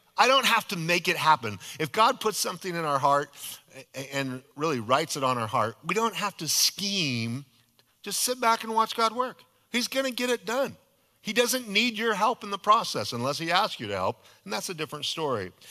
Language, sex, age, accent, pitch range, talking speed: English, male, 40-59, American, 115-185 Hz, 220 wpm